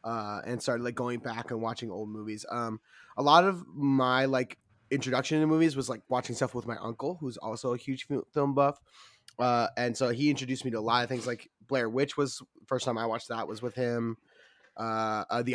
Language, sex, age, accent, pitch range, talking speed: English, male, 20-39, American, 115-130 Hz, 225 wpm